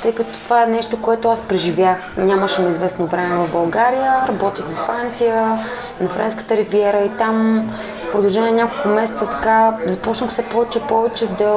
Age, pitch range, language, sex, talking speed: 20-39, 190-245 Hz, Bulgarian, female, 155 wpm